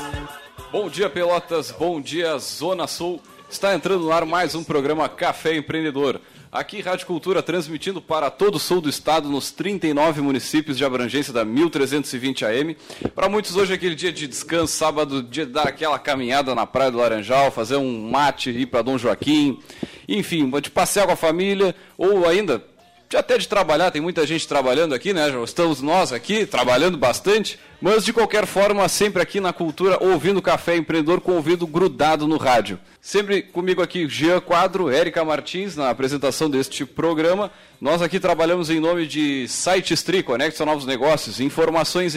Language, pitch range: Portuguese, 145-180 Hz